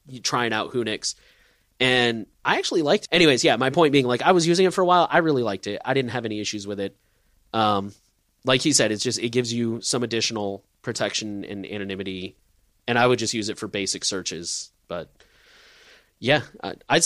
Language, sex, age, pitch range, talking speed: English, male, 20-39, 105-150 Hz, 200 wpm